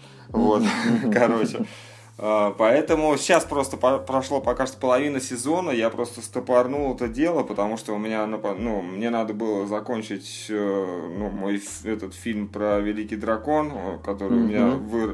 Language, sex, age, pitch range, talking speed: Russian, male, 20-39, 100-120 Hz, 145 wpm